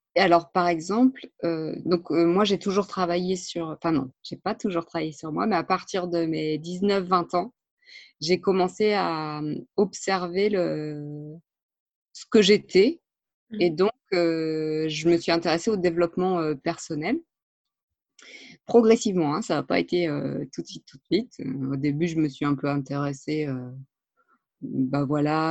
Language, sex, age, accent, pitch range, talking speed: French, female, 20-39, French, 155-200 Hz, 165 wpm